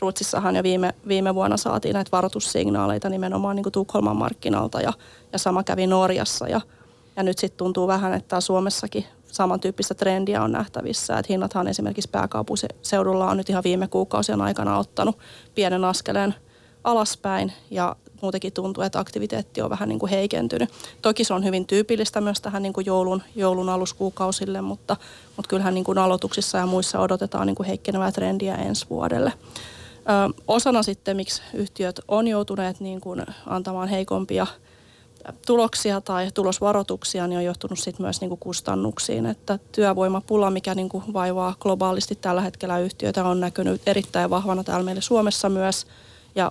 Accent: native